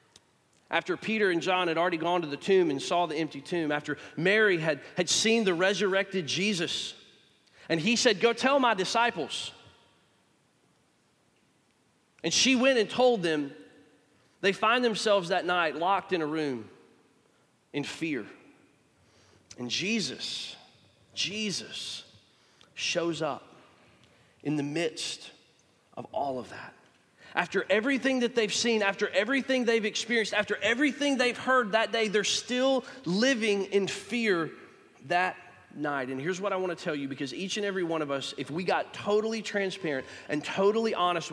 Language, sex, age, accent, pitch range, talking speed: English, male, 40-59, American, 155-210 Hz, 150 wpm